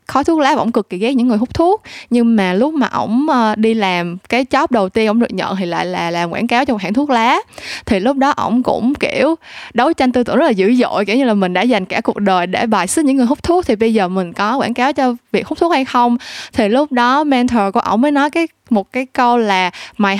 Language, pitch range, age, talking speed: Vietnamese, 205-260 Hz, 20-39, 280 wpm